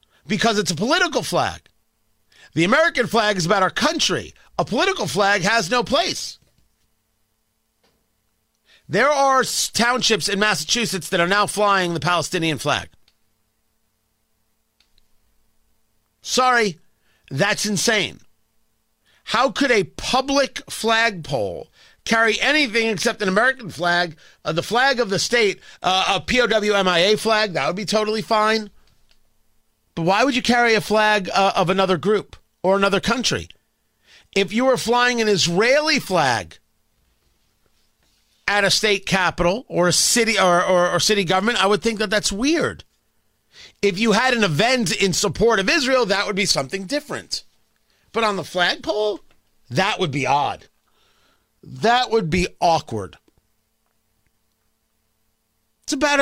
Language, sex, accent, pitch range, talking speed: English, male, American, 145-230 Hz, 135 wpm